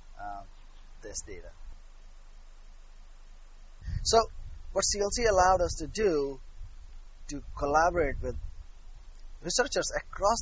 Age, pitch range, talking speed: 30-49, 105-155 Hz, 85 wpm